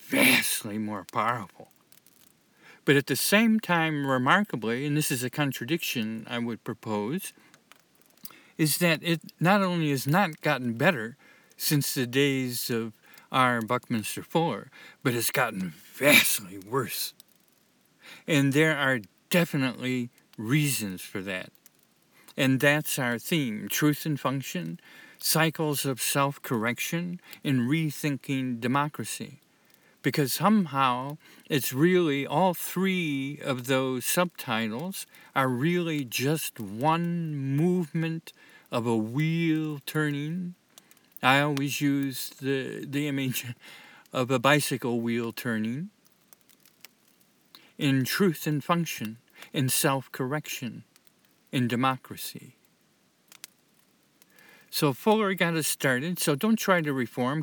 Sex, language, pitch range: male, English, 125-160 Hz